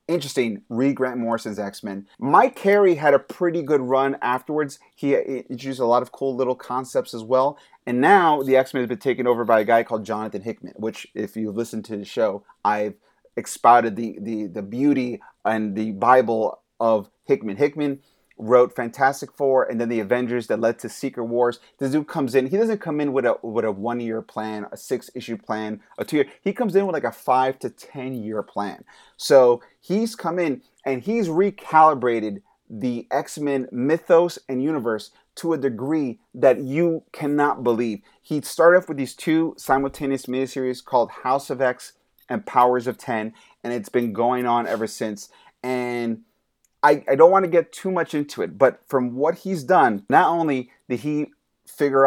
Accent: American